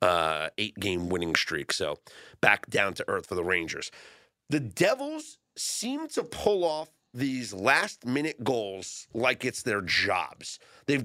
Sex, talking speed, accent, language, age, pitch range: male, 150 wpm, American, English, 40-59, 120-160 Hz